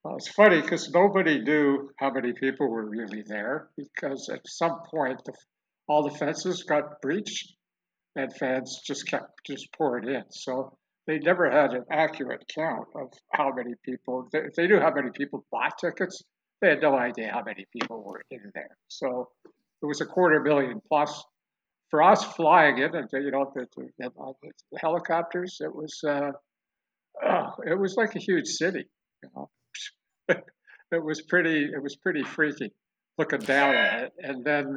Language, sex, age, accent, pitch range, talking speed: English, male, 60-79, American, 135-170 Hz, 180 wpm